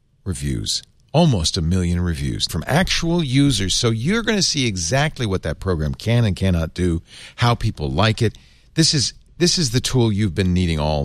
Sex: male